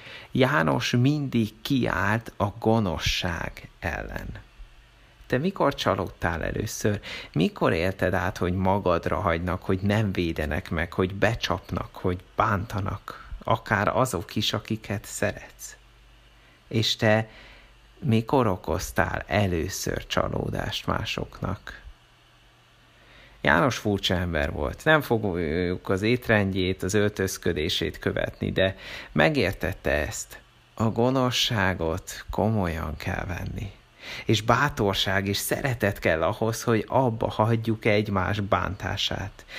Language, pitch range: Hungarian, 95-115 Hz